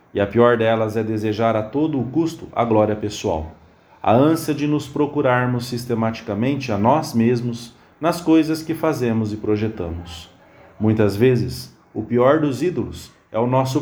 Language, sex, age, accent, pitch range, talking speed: English, male, 40-59, Brazilian, 105-135 Hz, 160 wpm